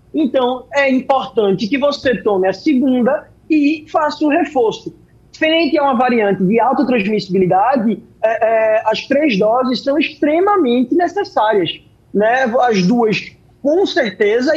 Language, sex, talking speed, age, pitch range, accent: Portuguese, male, 125 wpm, 20-39, 225-300 Hz, Brazilian